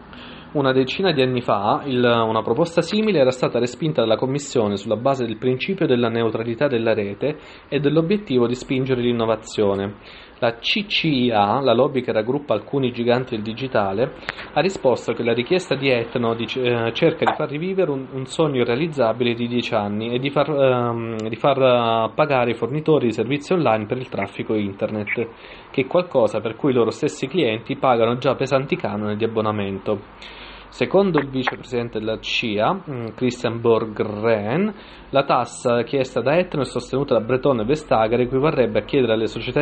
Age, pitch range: 20-39, 115-140 Hz